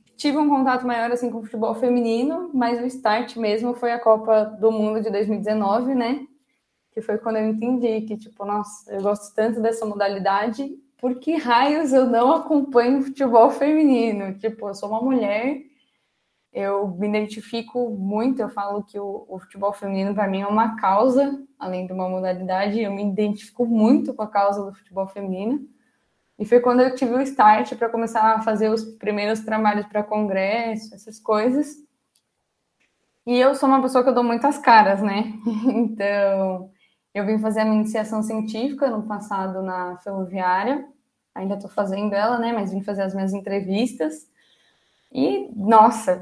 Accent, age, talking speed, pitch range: Brazilian, 10-29, 170 wpm, 205-245 Hz